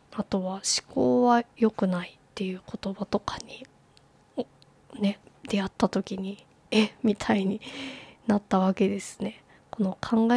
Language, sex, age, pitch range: Japanese, female, 20-39, 195-230 Hz